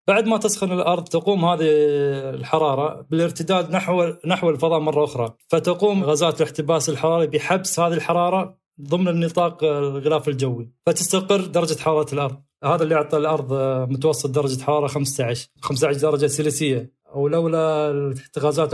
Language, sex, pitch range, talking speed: Arabic, male, 145-175 Hz, 130 wpm